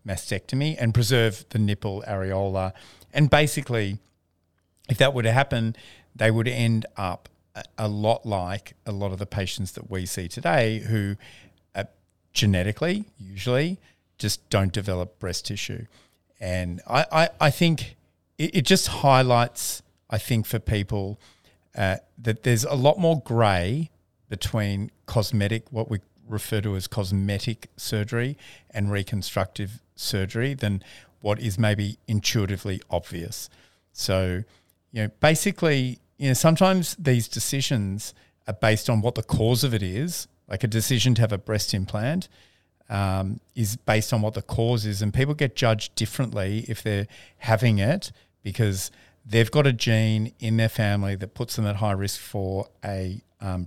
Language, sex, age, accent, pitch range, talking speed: English, male, 50-69, Australian, 95-120 Hz, 155 wpm